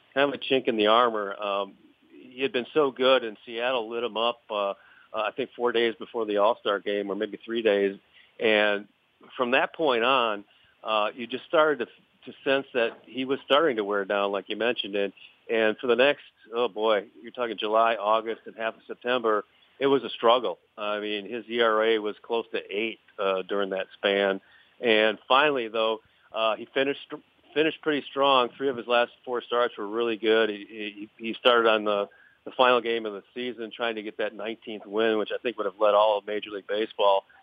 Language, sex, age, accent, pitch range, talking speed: English, male, 50-69, American, 105-120 Hz, 210 wpm